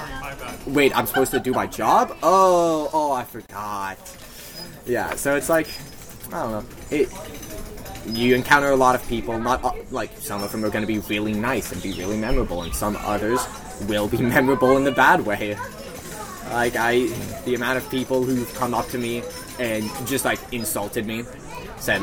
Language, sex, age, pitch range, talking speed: English, male, 20-39, 110-155 Hz, 185 wpm